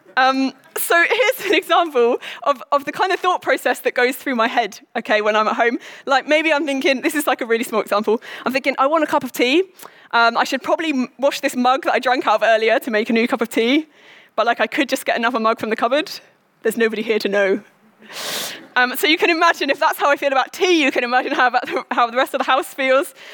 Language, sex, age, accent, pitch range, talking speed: English, female, 20-39, British, 235-305 Hz, 260 wpm